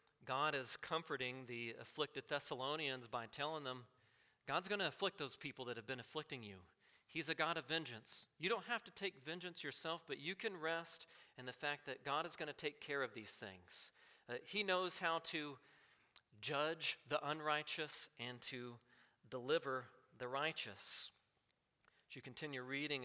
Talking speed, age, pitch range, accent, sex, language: 170 wpm, 40-59, 125-155 Hz, American, male, English